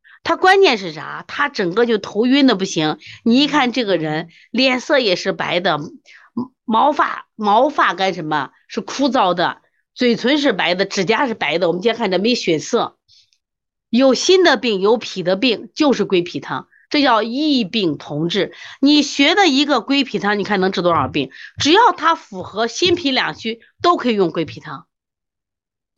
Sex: female